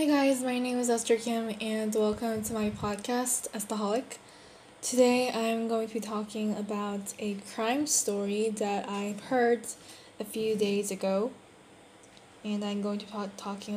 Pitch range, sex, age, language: 205-230 Hz, female, 10-29, Korean